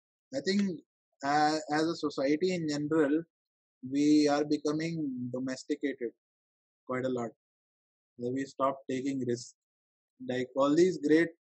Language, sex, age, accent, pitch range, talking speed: English, male, 20-39, Indian, 140-190 Hz, 125 wpm